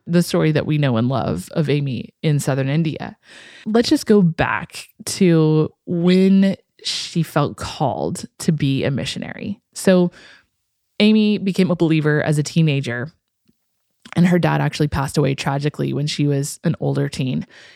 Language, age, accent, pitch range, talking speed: English, 20-39, American, 145-185 Hz, 155 wpm